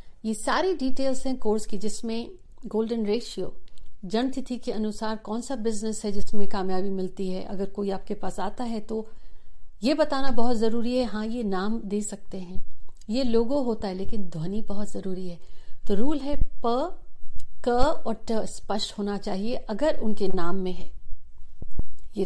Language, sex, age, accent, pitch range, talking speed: Hindi, female, 50-69, native, 195-245 Hz, 170 wpm